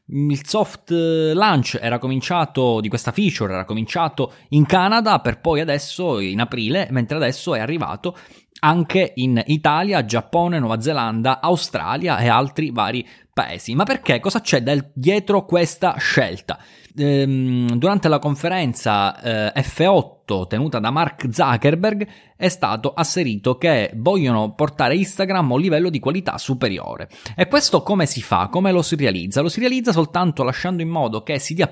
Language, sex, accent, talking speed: Italian, male, native, 150 wpm